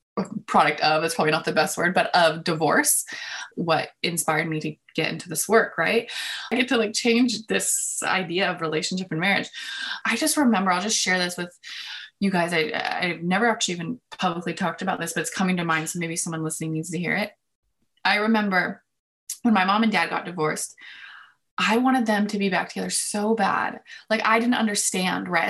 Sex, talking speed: female, 200 wpm